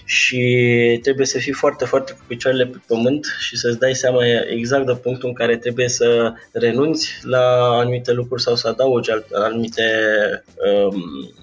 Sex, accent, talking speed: male, native, 160 wpm